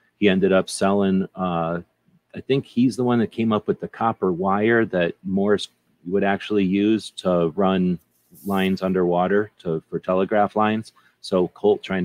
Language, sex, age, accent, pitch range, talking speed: English, male, 30-49, American, 85-95 Hz, 165 wpm